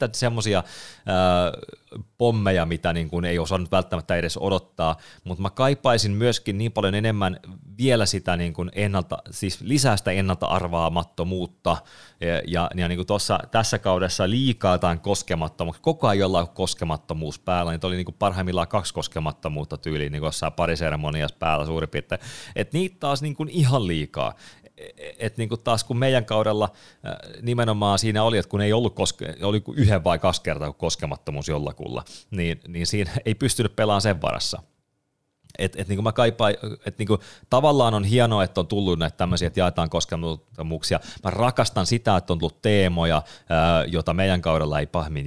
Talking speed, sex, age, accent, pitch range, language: 150 wpm, male, 30-49, native, 85-110 Hz, Finnish